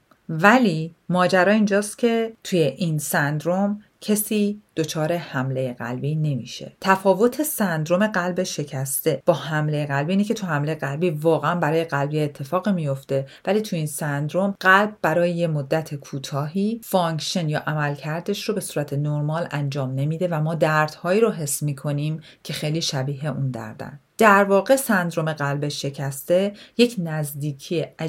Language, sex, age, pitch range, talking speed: Persian, female, 40-59, 150-195 Hz, 140 wpm